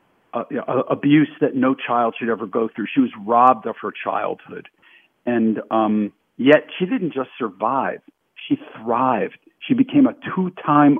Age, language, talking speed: 50-69, English, 155 wpm